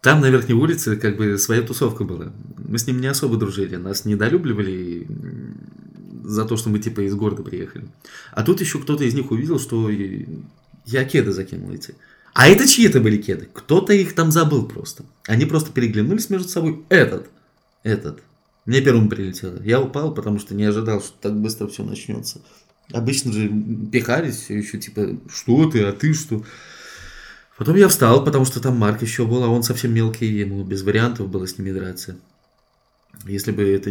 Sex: male